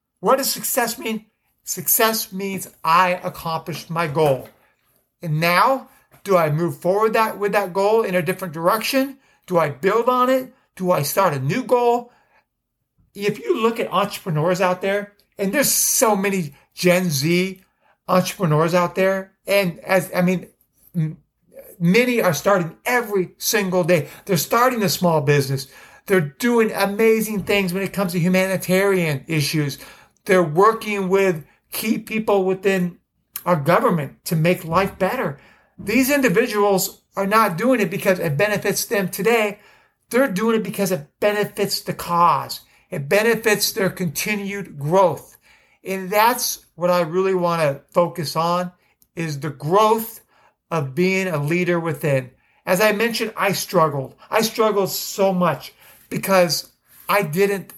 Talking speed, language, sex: 145 wpm, English, male